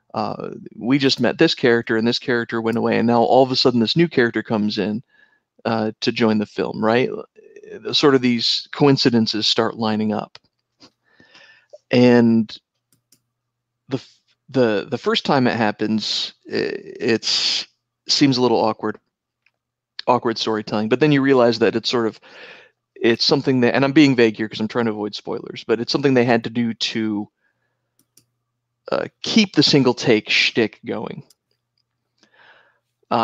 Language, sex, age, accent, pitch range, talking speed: English, male, 40-59, American, 115-135 Hz, 160 wpm